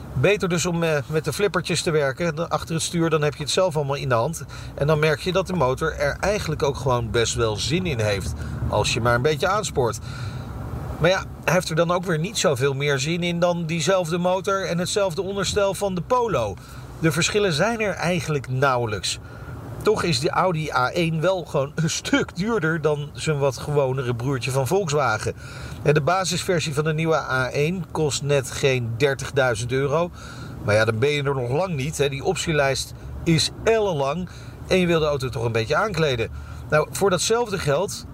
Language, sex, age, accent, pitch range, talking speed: Dutch, male, 40-59, Dutch, 130-175 Hz, 195 wpm